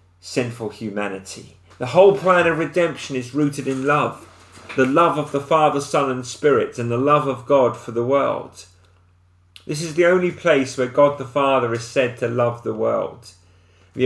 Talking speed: 185 wpm